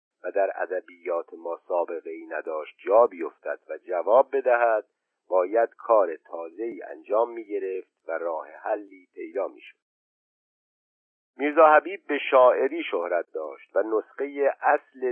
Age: 50-69